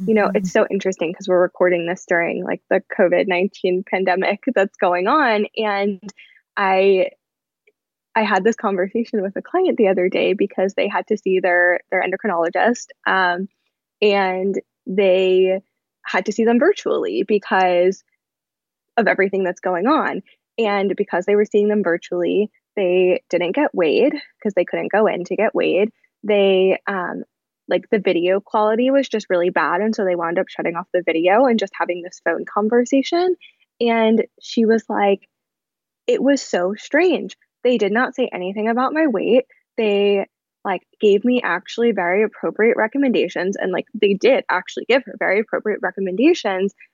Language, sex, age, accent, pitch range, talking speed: English, female, 10-29, American, 185-225 Hz, 165 wpm